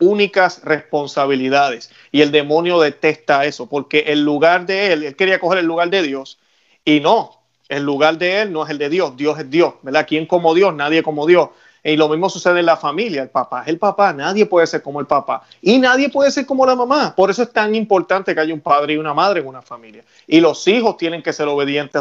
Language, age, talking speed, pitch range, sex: Spanish, 30-49, 235 wpm, 145-185 Hz, male